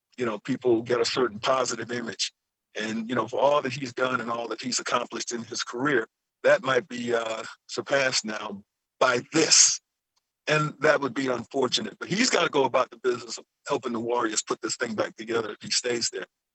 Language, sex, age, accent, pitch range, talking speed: English, male, 50-69, American, 115-155 Hz, 210 wpm